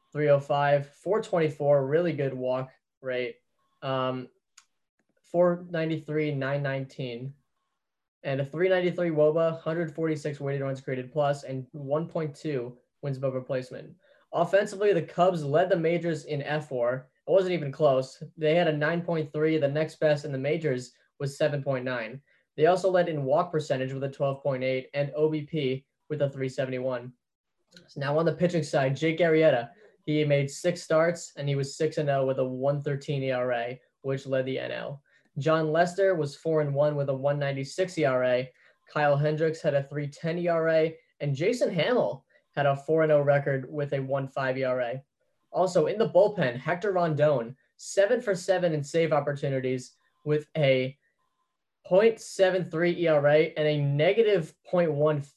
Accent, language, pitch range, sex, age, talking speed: American, English, 135-165 Hz, male, 10-29, 145 wpm